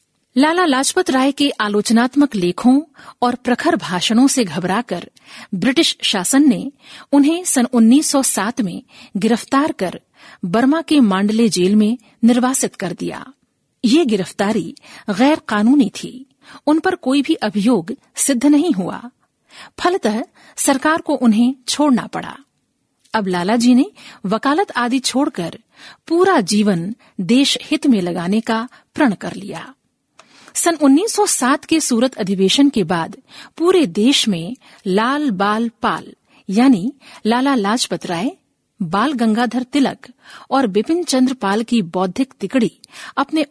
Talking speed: 125 wpm